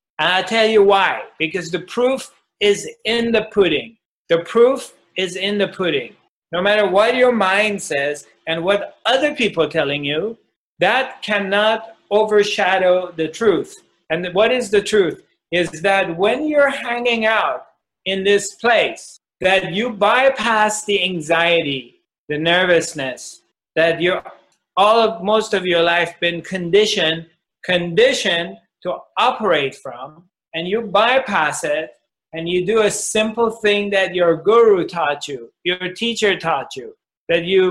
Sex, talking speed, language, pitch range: male, 145 wpm, English, 175-220 Hz